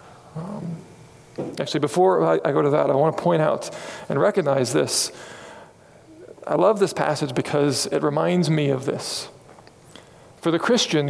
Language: English